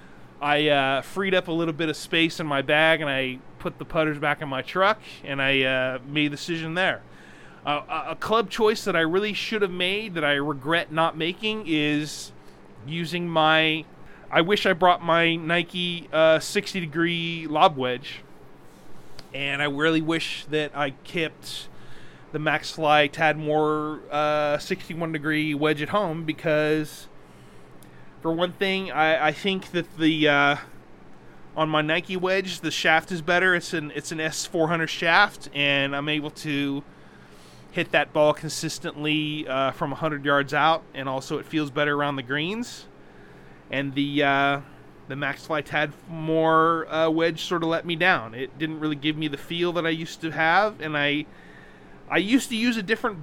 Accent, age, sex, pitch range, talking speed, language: American, 30-49, male, 145-170 Hz, 170 wpm, English